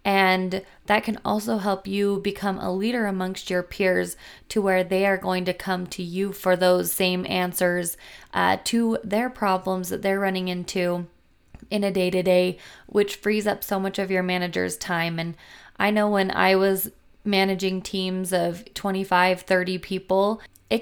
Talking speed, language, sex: 165 wpm, English, female